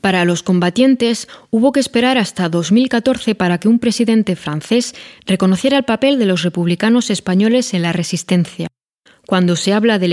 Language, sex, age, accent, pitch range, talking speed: Spanish, female, 20-39, Spanish, 175-235 Hz, 160 wpm